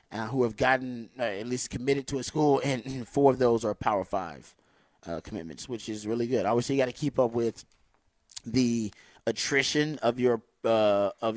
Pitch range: 110-125 Hz